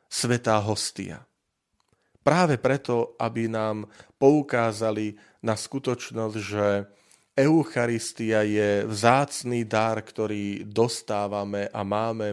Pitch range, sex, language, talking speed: 105-130 Hz, male, Slovak, 90 wpm